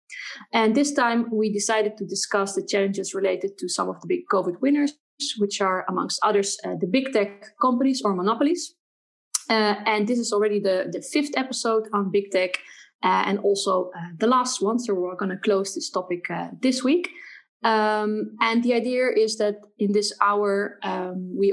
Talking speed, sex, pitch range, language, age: 190 wpm, female, 190-250 Hz, English, 20-39